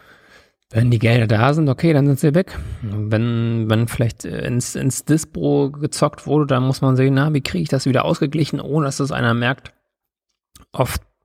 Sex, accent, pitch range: male, German, 100-135 Hz